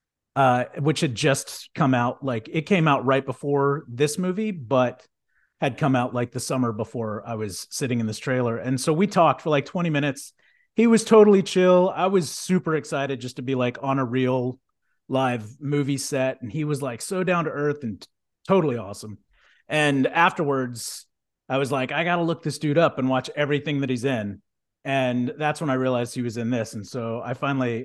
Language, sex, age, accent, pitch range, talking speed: English, male, 30-49, American, 120-150 Hz, 205 wpm